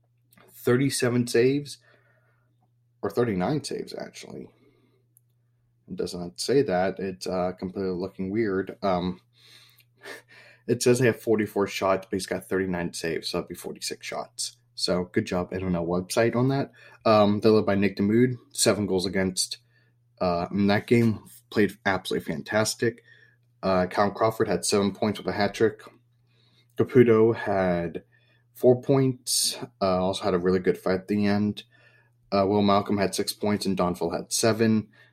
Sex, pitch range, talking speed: male, 95-120 Hz, 155 wpm